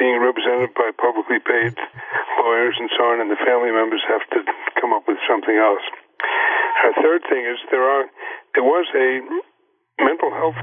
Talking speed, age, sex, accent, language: 160 wpm, 50-69, male, American, English